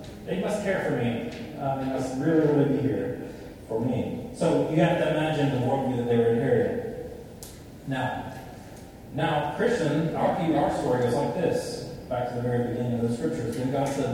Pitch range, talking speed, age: 120-155 Hz, 195 wpm, 30-49